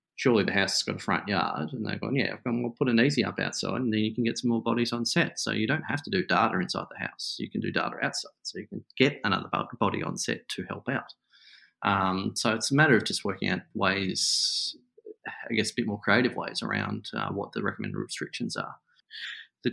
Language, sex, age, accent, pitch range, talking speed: English, male, 30-49, Australian, 110-140 Hz, 240 wpm